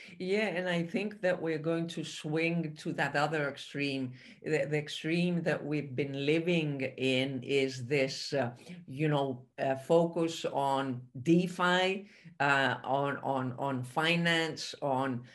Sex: female